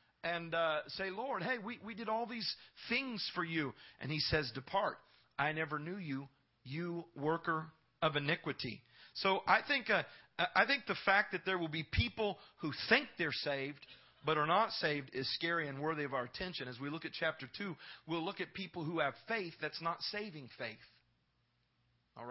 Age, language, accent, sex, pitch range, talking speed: 40-59, English, American, male, 135-185 Hz, 190 wpm